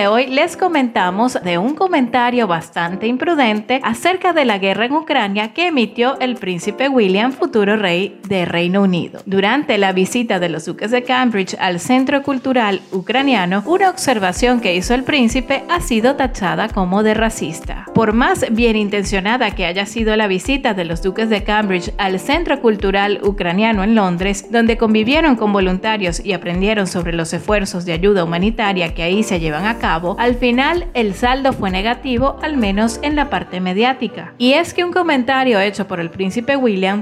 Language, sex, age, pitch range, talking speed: Spanish, female, 30-49, 195-260 Hz, 175 wpm